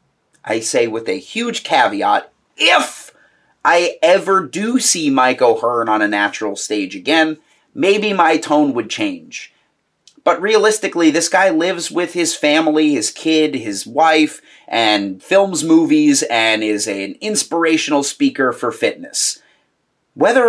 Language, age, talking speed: English, 30-49, 135 wpm